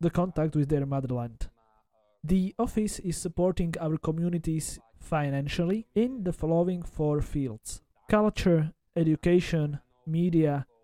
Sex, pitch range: male, 140-170 Hz